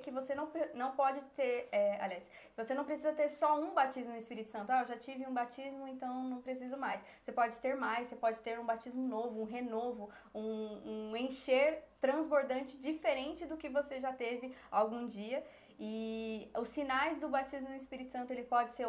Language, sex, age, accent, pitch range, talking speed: Portuguese, female, 20-39, Brazilian, 225-270 Hz, 195 wpm